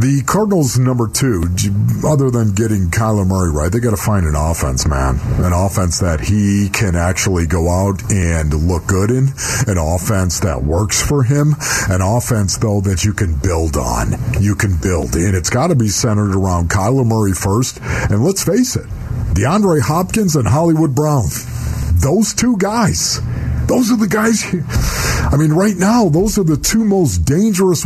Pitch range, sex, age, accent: 105-165 Hz, male, 50-69, American